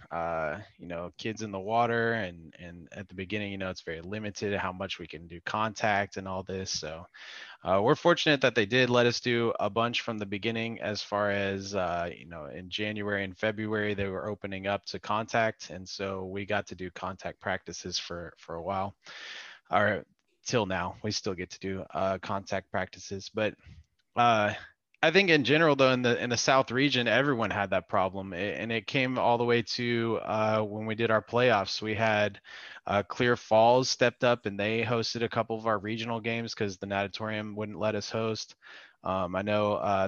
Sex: male